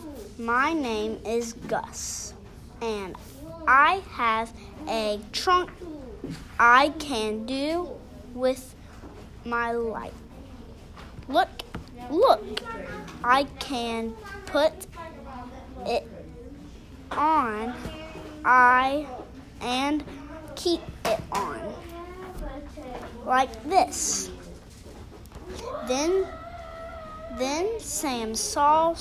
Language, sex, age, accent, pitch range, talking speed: English, female, 20-39, American, 225-325 Hz, 70 wpm